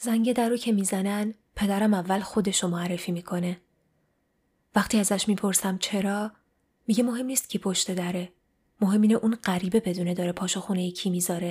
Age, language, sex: 20-39, Persian, female